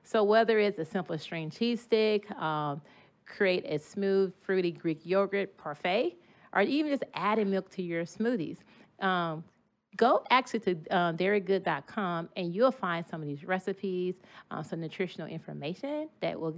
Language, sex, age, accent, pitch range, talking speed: English, female, 30-49, American, 160-210 Hz, 150 wpm